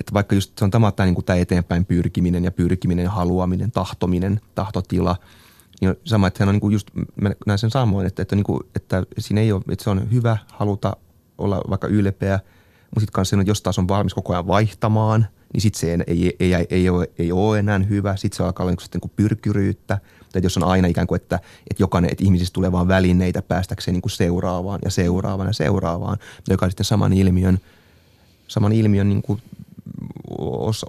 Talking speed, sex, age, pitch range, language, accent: 175 wpm, male, 30-49, 90-105 Hz, Finnish, native